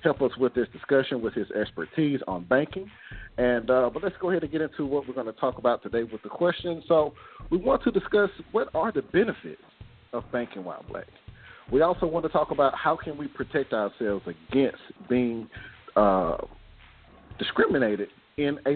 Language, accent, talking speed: English, American, 190 wpm